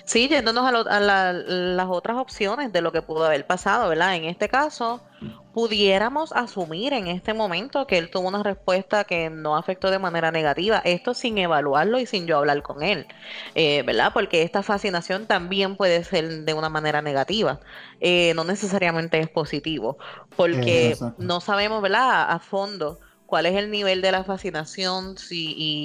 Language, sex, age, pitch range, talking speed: Spanish, female, 20-39, 165-200 Hz, 175 wpm